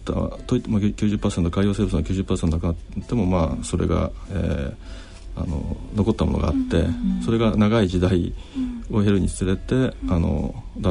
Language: Japanese